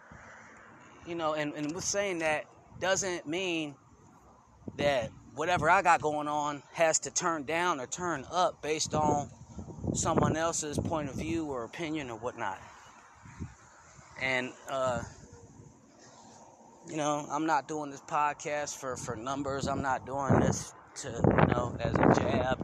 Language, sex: English, male